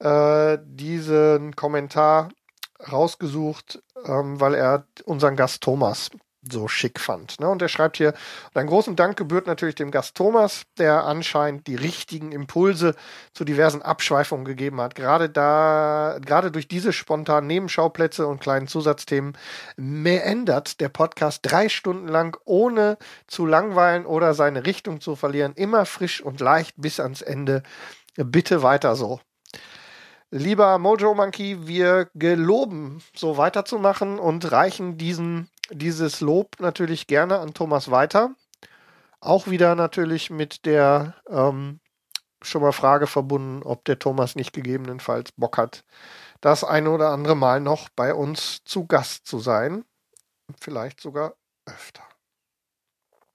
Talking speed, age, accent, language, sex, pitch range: 130 wpm, 40-59, German, German, male, 145-180 Hz